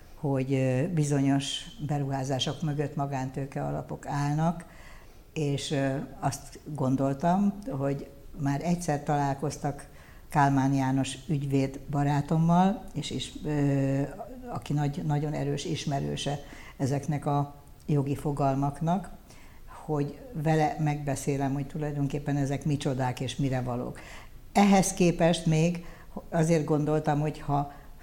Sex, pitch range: female, 135-150 Hz